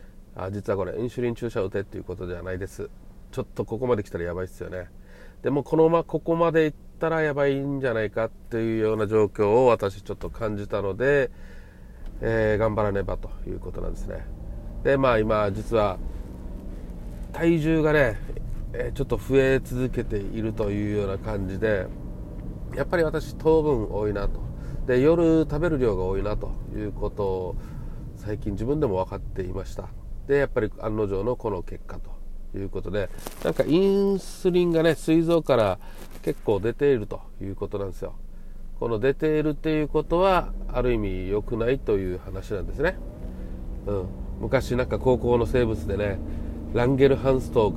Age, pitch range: 40-59, 95-130 Hz